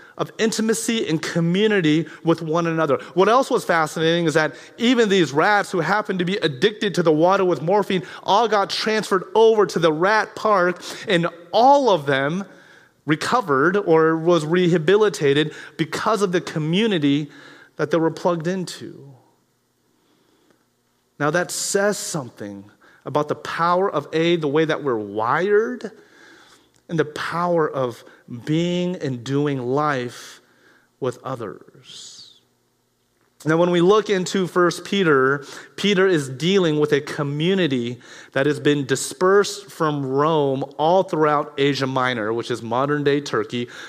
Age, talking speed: 30-49, 140 wpm